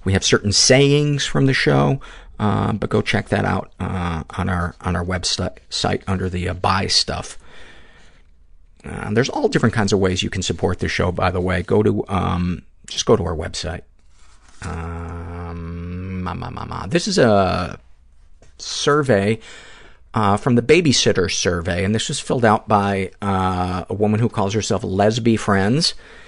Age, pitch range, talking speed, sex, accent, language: 40-59, 95-115 Hz, 175 wpm, male, American, English